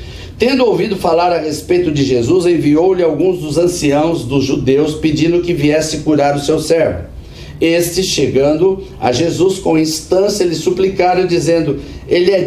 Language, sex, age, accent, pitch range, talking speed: Portuguese, male, 60-79, Brazilian, 155-190 Hz, 150 wpm